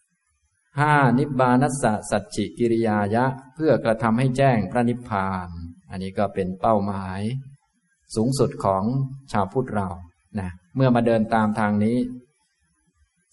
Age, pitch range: 20-39, 100-120 Hz